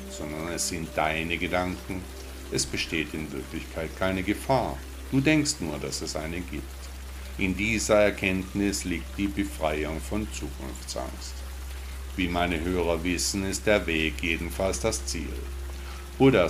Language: German